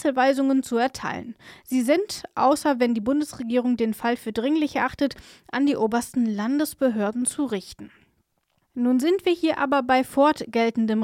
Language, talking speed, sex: German, 145 wpm, female